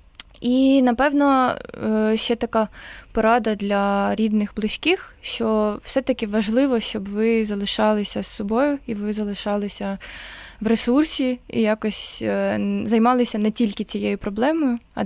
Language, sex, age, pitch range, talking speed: Ukrainian, female, 20-39, 200-230 Hz, 115 wpm